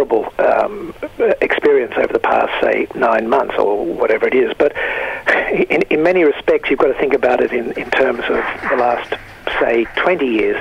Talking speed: 185 wpm